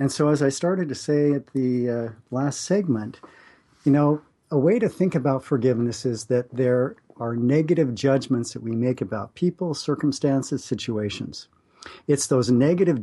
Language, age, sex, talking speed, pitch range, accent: English, 50-69, male, 165 wpm, 125-150 Hz, American